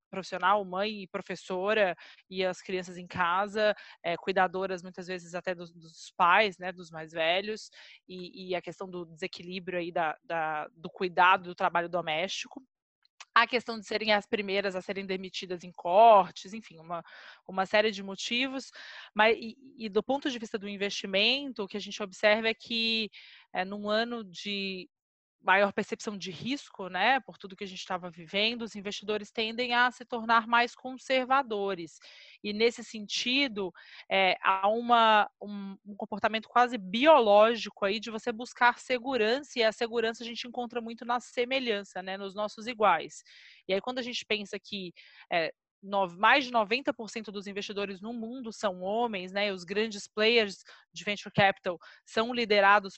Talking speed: 160 wpm